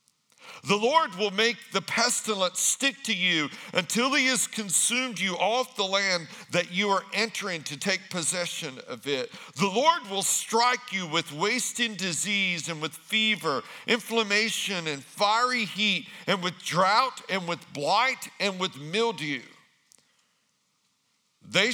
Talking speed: 140 wpm